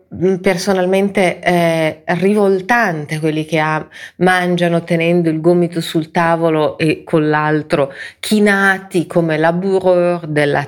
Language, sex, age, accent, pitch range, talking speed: Italian, female, 40-59, native, 155-185 Hz, 100 wpm